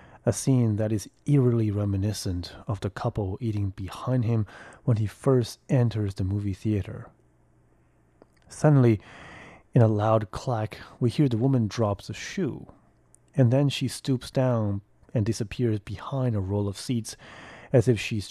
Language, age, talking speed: English, 30-49, 150 wpm